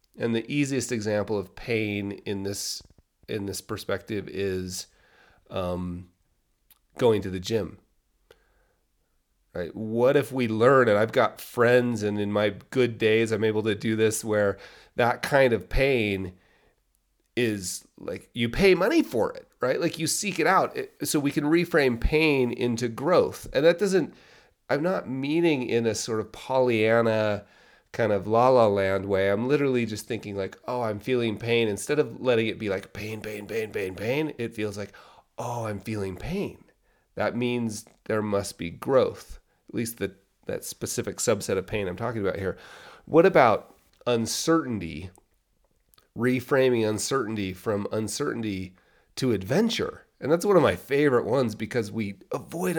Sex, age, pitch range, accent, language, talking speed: male, 30-49, 105-135 Hz, American, English, 160 wpm